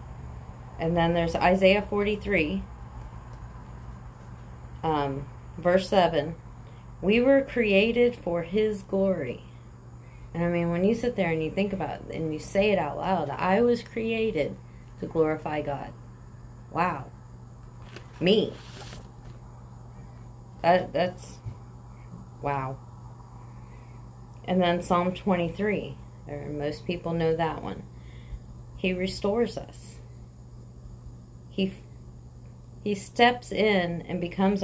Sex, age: female, 30-49